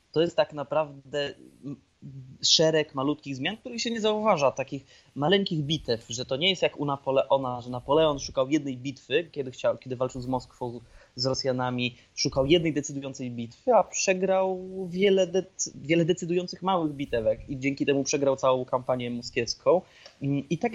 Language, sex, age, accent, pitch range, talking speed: Polish, male, 20-39, native, 130-165 Hz, 150 wpm